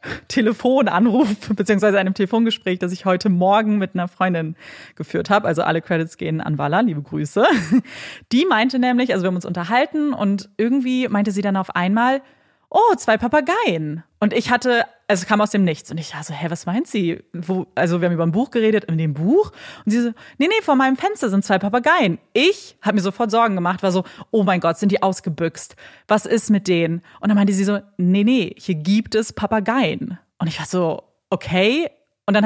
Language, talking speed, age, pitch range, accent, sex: German, 210 wpm, 30-49, 185-240 Hz, German, female